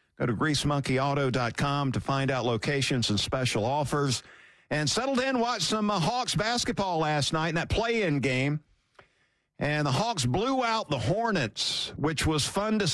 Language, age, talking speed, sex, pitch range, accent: English, 50-69, 160 wpm, male, 125-160 Hz, American